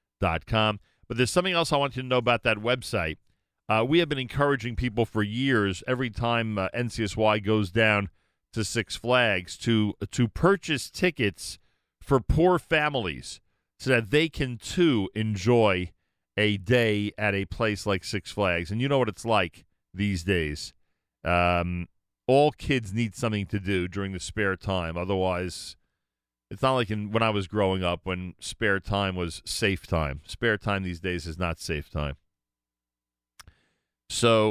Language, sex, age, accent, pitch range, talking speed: English, male, 40-59, American, 90-115 Hz, 165 wpm